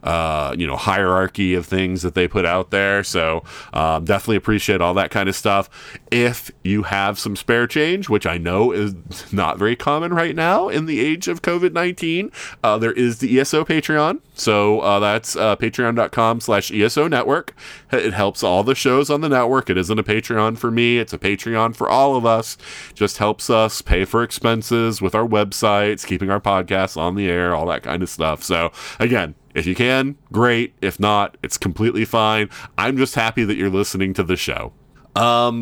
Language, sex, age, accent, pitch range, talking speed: English, male, 30-49, American, 95-115 Hz, 190 wpm